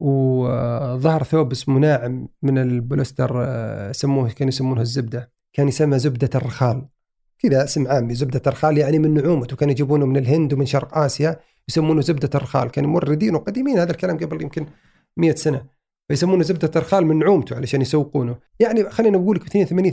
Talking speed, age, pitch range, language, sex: 160 wpm, 40-59, 130-170 Hz, Arabic, male